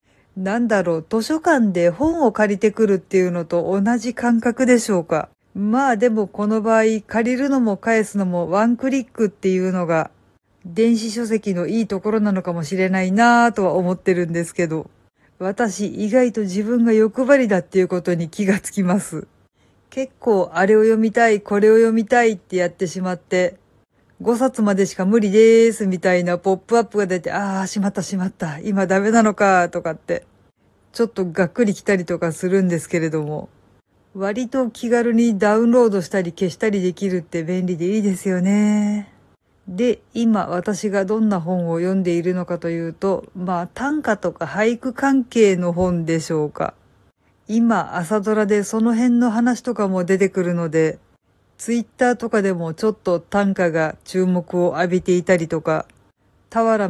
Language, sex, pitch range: Japanese, female, 175-225 Hz